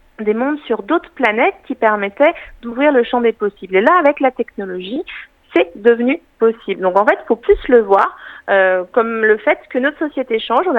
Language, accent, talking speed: French, French, 205 wpm